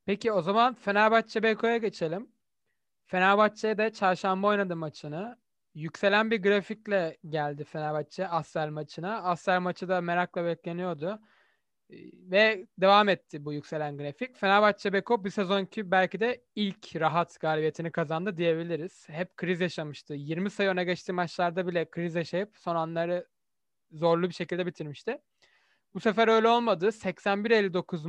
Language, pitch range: Turkish, 165-210 Hz